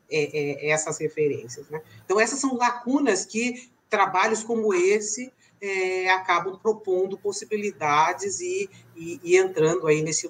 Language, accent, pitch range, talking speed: Portuguese, Brazilian, 160-215 Hz, 120 wpm